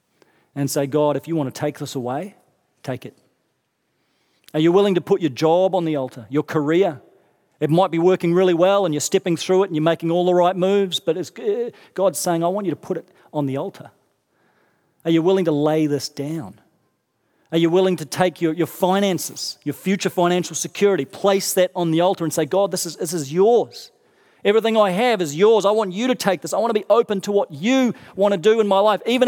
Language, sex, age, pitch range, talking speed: English, male, 40-59, 170-220 Hz, 235 wpm